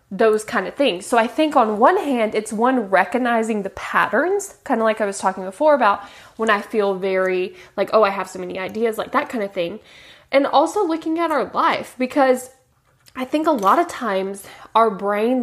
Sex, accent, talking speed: female, American, 210 wpm